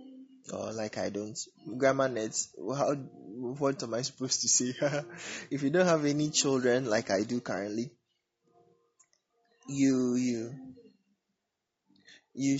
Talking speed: 125 wpm